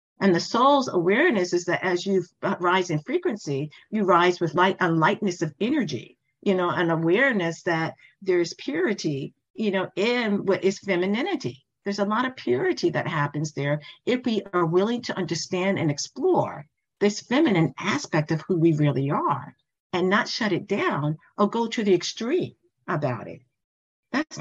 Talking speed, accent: 170 wpm, American